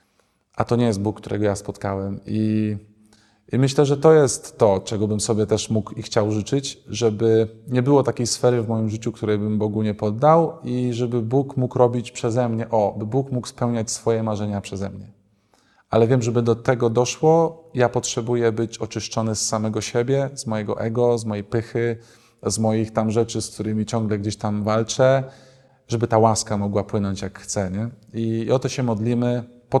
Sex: male